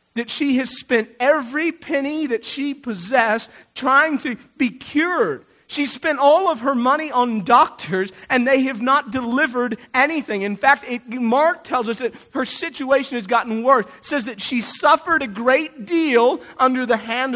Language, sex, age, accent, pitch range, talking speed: English, male, 40-59, American, 195-265 Hz, 165 wpm